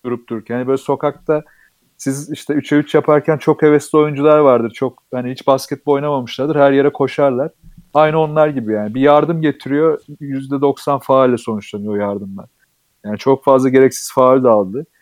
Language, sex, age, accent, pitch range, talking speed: Turkish, male, 40-59, native, 120-155 Hz, 155 wpm